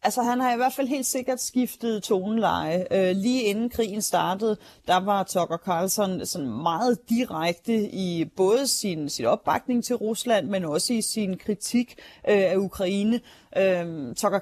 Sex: female